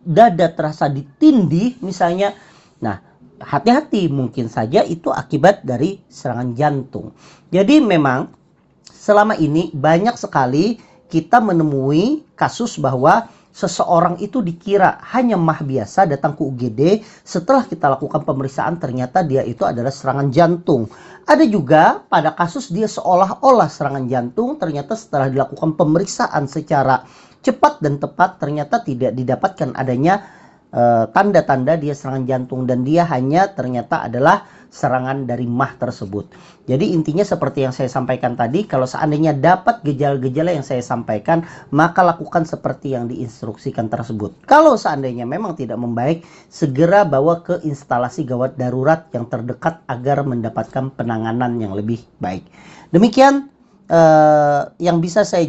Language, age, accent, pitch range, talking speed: Indonesian, 40-59, native, 135-180 Hz, 130 wpm